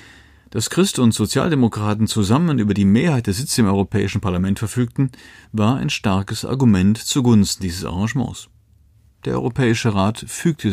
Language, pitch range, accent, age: German, 95-120 Hz, German, 40-59